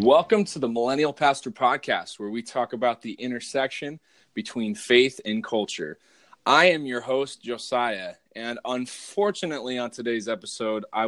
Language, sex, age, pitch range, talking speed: English, male, 20-39, 105-130 Hz, 145 wpm